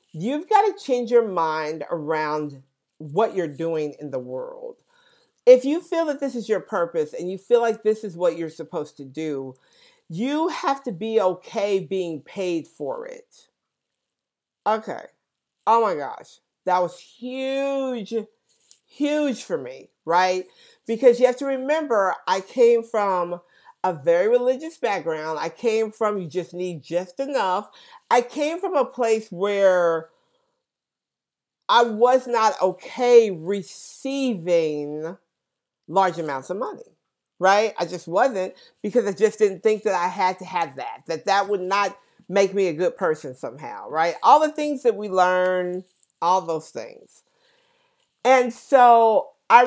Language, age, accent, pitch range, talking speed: English, 50-69, American, 175-275 Hz, 150 wpm